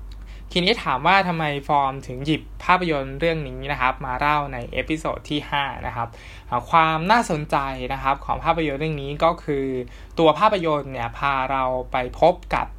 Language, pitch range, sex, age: Thai, 125-155 Hz, male, 20-39